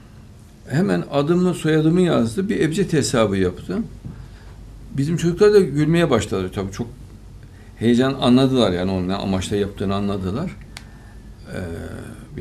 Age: 60-79